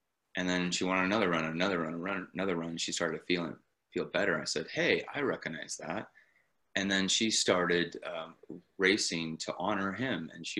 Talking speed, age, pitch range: 185 wpm, 30-49, 80-95 Hz